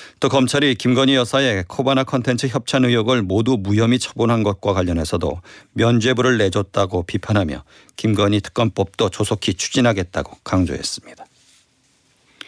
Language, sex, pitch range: Korean, male, 100-125 Hz